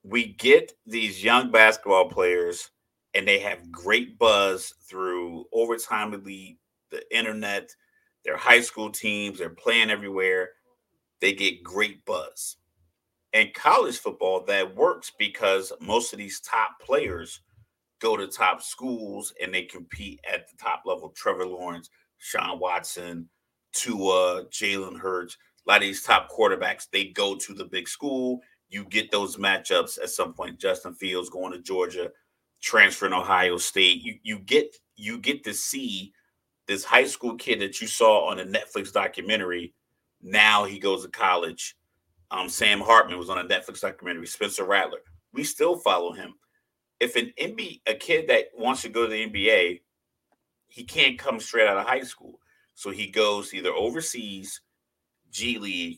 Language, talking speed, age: English, 160 wpm, 30-49